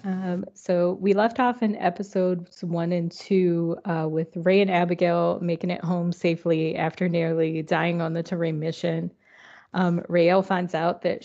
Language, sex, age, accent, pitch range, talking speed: English, female, 20-39, American, 170-190 Hz, 165 wpm